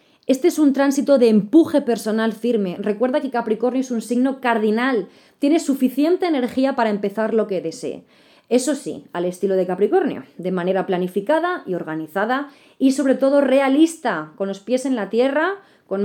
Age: 20-39